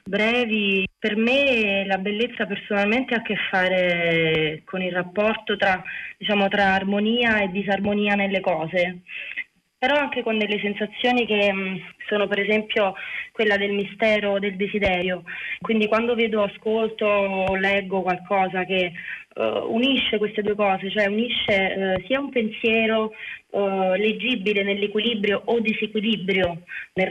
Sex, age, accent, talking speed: female, 20-39, native, 130 wpm